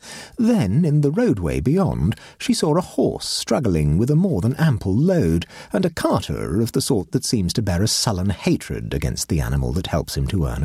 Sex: male